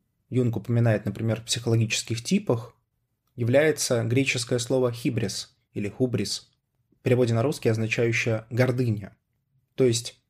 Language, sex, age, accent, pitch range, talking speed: Russian, male, 20-39, native, 110-135 Hz, 115 wpm